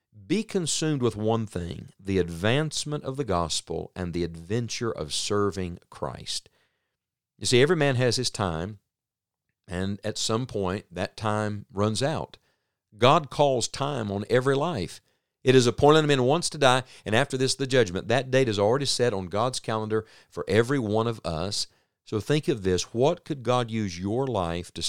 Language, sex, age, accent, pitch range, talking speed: English, male, 50-69, American, 95-130 Hz, 180 wpm